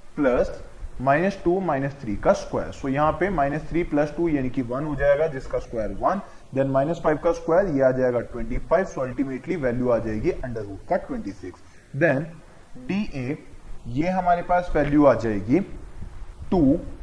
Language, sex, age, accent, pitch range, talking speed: Hindi, male, 20-39, native, 130-175 Hz, 180 wpm